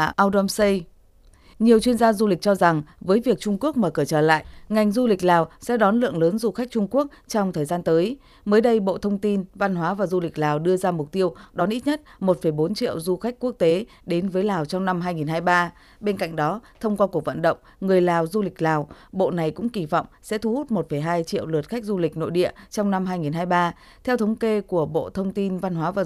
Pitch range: 165-210 Hz